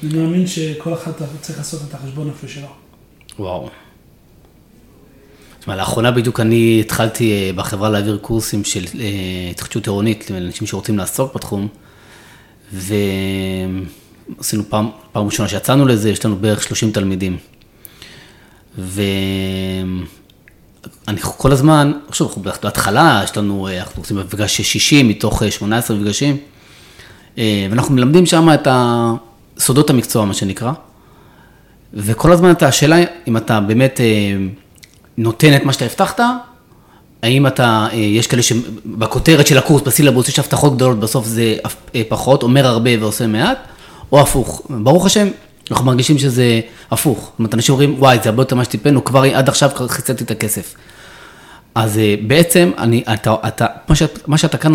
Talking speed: 140 wpm